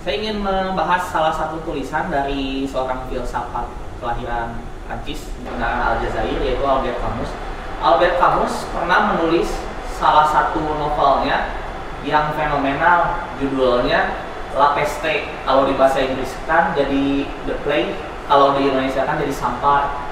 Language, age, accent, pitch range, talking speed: Indonesian, 20-39, native, 140-180 Hz, 120 wpm